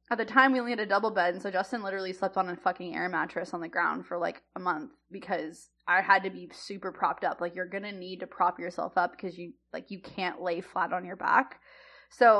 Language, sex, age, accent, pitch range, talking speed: English, female, 20-39, American, 175-205 Hz, 260 wpm